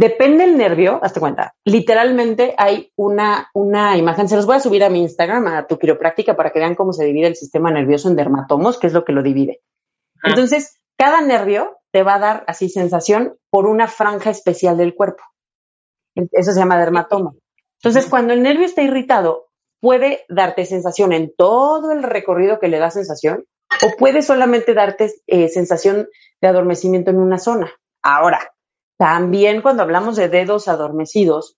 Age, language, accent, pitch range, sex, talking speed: 30-49, Spanish, Mexican, 170-230 Hz, female, 175 wpm